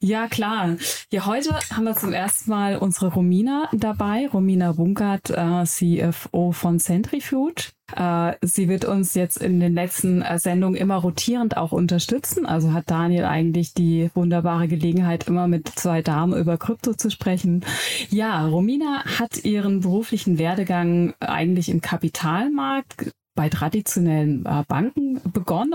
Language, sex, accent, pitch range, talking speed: German, female, German, 170-210 Hz, 135 wpm